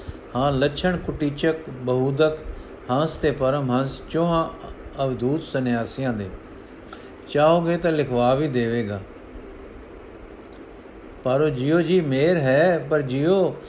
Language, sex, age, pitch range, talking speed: Punjabi, male, 50-69, 125-155 Hz, 105 wpm